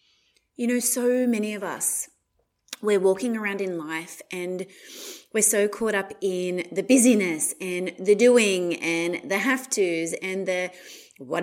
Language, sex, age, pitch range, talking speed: English, female, 30-49, 195-250 Hz, 145 wpm